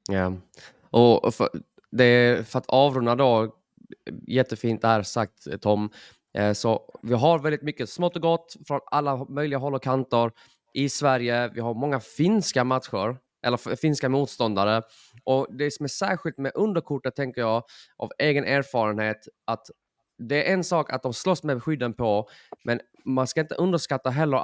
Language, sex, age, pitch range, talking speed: Swedish, male, 20-39, 120-150 Hz, 165 wpm